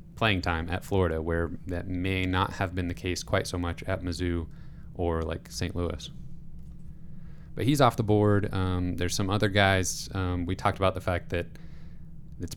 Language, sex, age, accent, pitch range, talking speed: English, male, 20-39, American, 85-100 Hz, 185 wpm